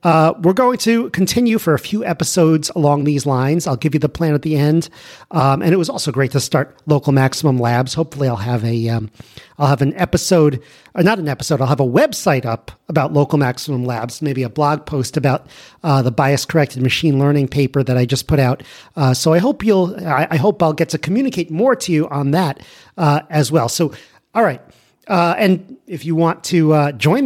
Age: 40-59